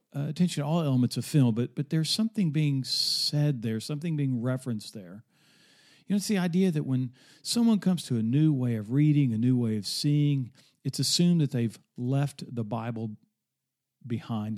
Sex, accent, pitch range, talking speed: male, American, 125-155 Hz, 190 wpm